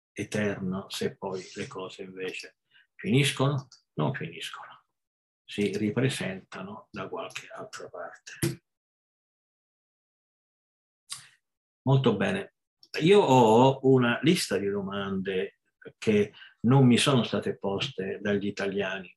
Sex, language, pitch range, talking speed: male, Italian, 100-135 Hz, 95 wpm